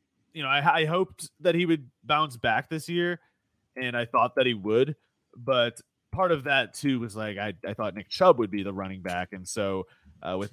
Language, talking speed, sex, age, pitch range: English, 220 wpm, male, 30-49, 100-130 Hz